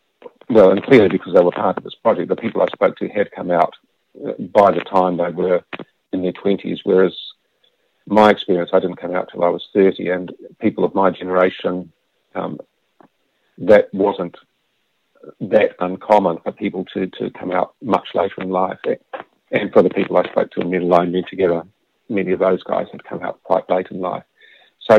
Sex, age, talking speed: male, 50-69, 195 wpm